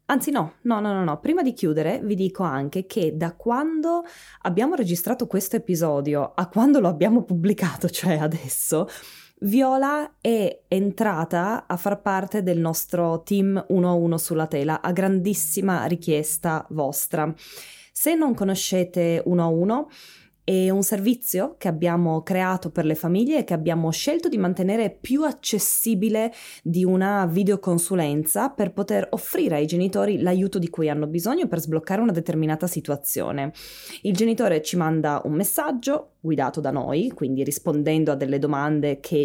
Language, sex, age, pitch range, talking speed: Italian, female, 20-39, 160-210 Hz, 155 wpm